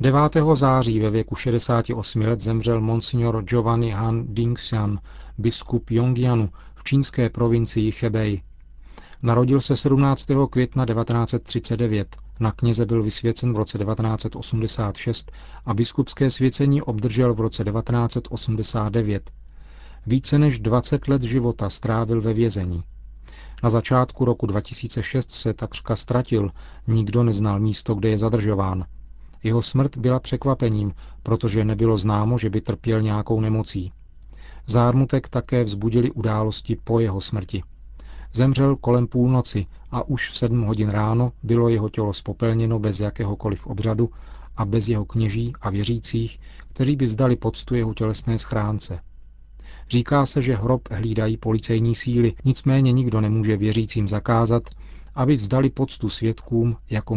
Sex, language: male, Czech